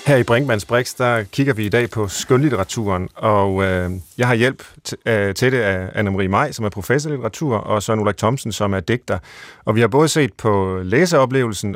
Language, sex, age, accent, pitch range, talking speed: Danish, male, 40-59, native, 105-135 Hz, 210 wpm